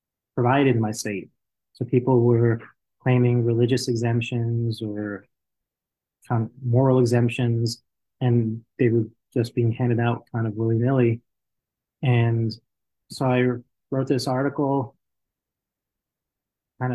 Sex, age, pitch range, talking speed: male, 20-39, 115-135 Hz, 115 wpm